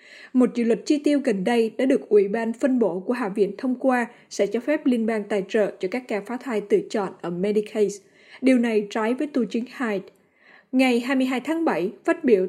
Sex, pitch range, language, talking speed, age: female, 205-255 Hz, Vietnamese, 225 wpm, 10-29